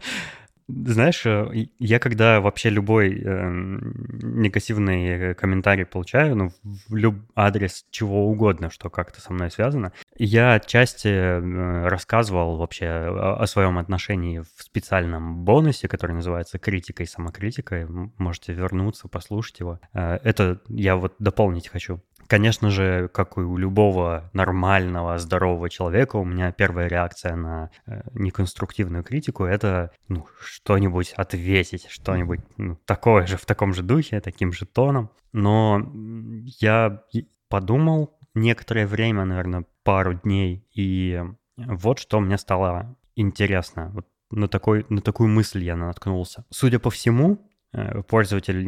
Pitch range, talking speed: 90-110 Hz, 120 wpm